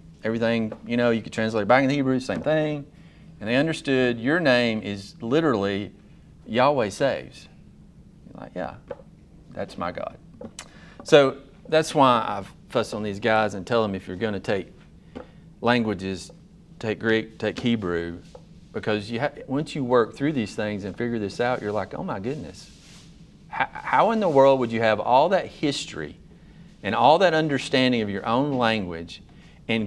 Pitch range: 110-150 Hz